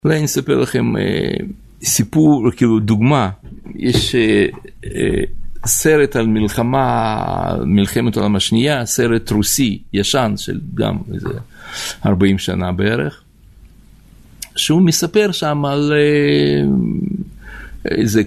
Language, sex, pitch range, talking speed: Hebrew, male, 105-155 Hz, 110 wpm